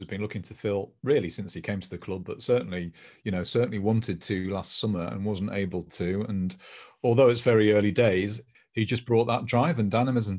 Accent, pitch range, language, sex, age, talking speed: British, 95-115 Hz, English, male, 40-59, 215 wpm